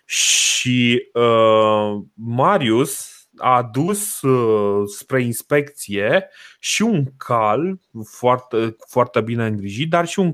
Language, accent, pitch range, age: Romanian, native, 110-130 Hz, 30-49